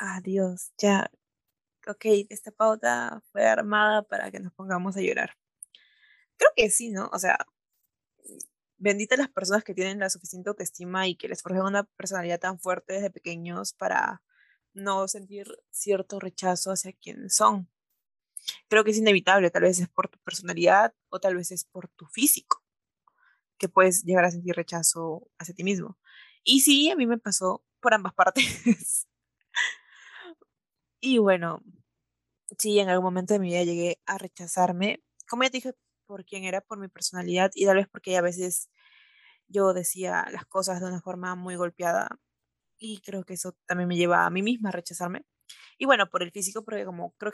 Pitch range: 180-215 Hz